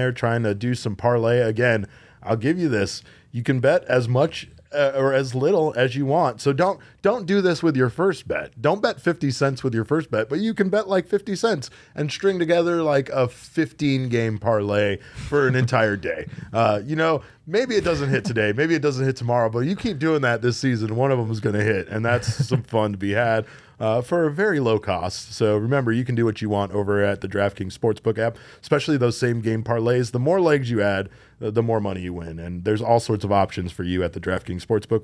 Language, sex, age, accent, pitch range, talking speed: English, male, 30-49, American, 110-145 Hz, 240 wpm